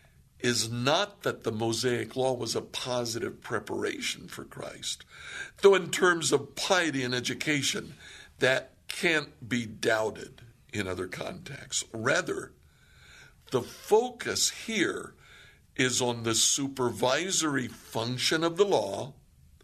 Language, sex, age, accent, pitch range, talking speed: English, male, 60-79, American, 110-140 Hz, 115 wpm